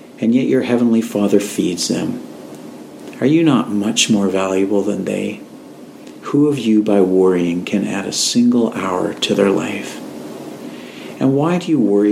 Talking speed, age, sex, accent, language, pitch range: 165 wpm, 50-69, male, American, English, 100-120 Hz